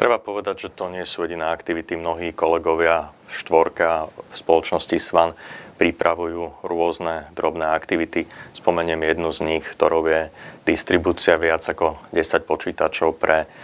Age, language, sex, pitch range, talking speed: 30-49, Slovak, male, 80-85 Hz, 135 wpm